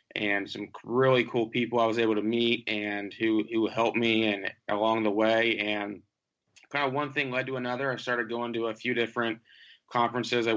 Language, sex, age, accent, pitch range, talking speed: English, male, 20-39, American, 110-120 Hz, 205 wpm